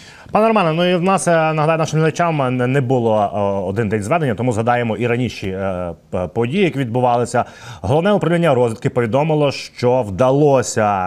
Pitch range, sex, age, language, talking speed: 105-135 Hz, male, 30-49, Ukrainian, 145 wpm